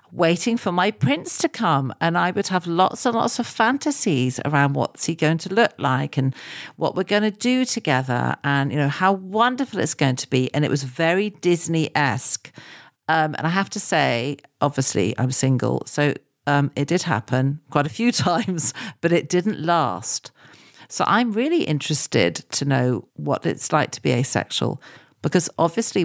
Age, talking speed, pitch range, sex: 50-69, 185 wpm, 135-185 Hz, female